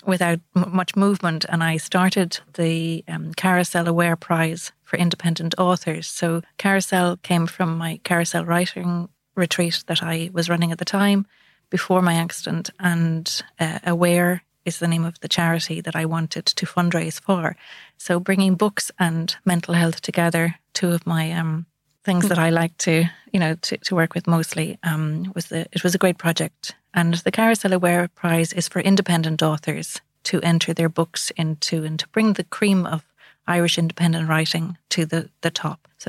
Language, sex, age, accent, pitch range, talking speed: English, female, 30-49, Irish, 165-180 Hz, 175 wpm